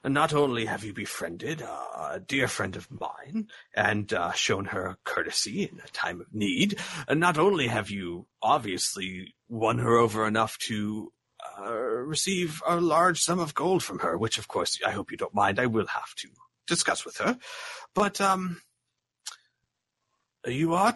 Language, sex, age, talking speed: English, male, 40-59, 170 wpm